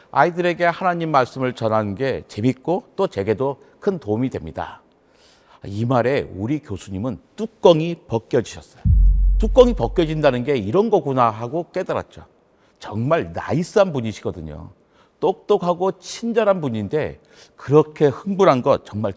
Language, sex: Korean, male